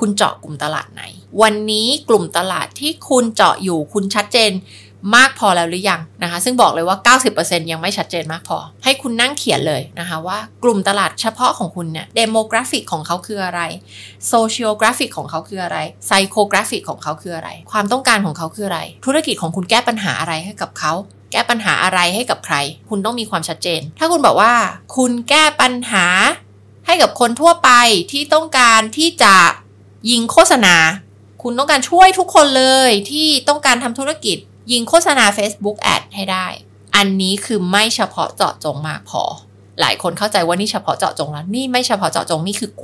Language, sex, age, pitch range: Thai, female, 20-39, 175-240 Hz